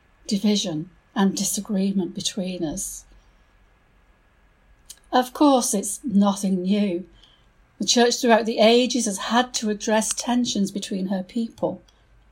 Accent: British